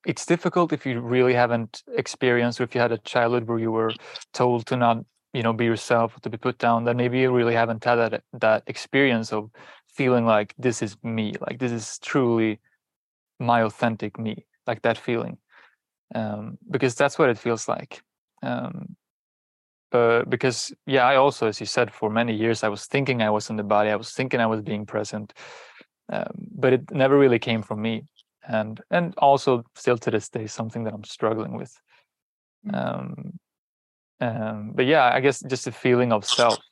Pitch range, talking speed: 110-125 Hz, 190 wpm